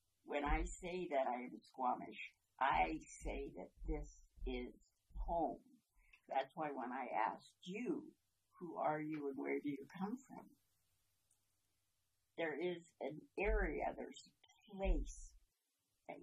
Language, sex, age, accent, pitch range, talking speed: English, female, 60-79, American, 110-170 Hz, 135 wpm